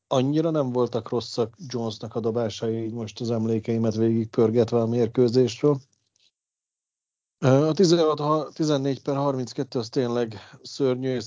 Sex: male